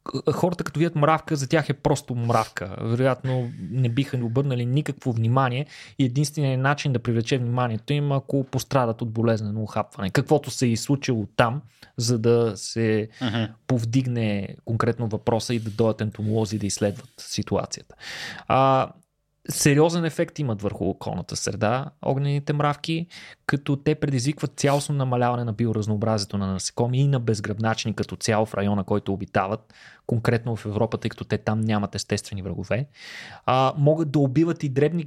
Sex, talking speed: male, 150 wpm